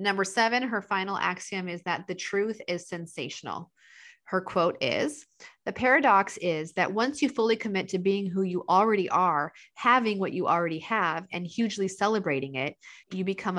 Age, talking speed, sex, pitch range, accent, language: 40-59, 170 wpm, female, 165-210 Hz, American, English